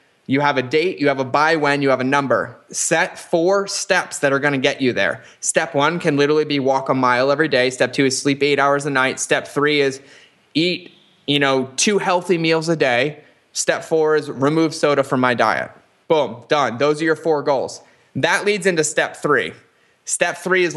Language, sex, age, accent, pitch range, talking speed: English, male, 20-39, American, 140-175 Hz, 215 wpm